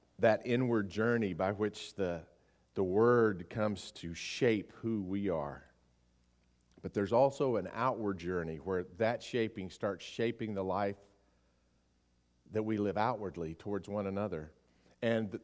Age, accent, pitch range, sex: 50-69, American, 90-130 Hz, male